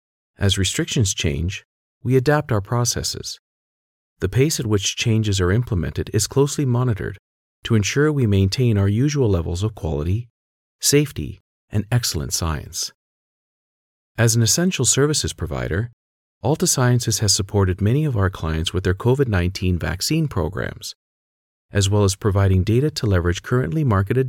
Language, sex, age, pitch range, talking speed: English, male, 40-59, 90-125 Hz, 140 wpm